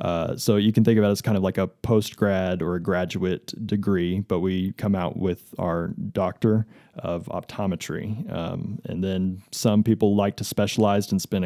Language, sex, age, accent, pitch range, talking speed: English, male, 30-49, American, 95-115 Hz, 190 wpm